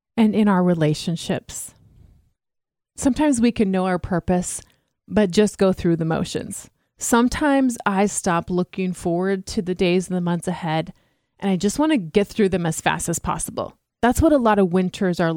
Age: 30-49